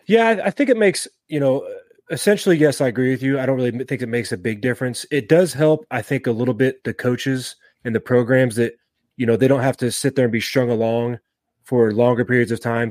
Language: English